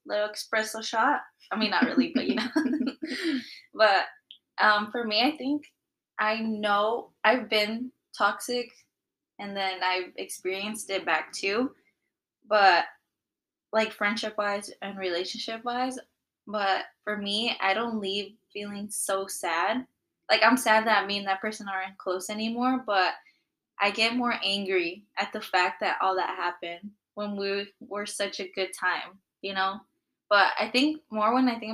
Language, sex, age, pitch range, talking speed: English, female, 10-29, 190-220 Hz, 155 wpm